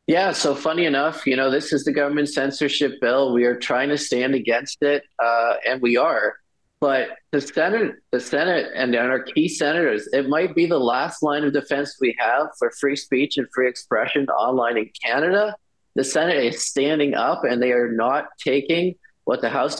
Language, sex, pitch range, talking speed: English, male, 135-170 Hz, 195 wpm